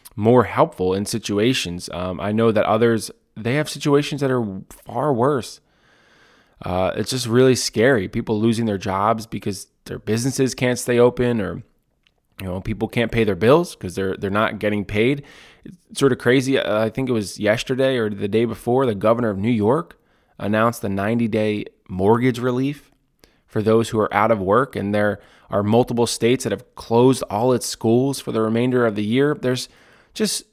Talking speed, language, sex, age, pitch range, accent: 185 wpm, English, male, 20-39, 105-125 Hz, American